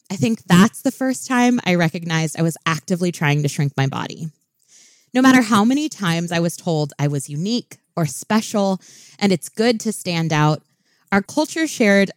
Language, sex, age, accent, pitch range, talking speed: English, female, 20-39, American, 155-200 Hz, 185 wpm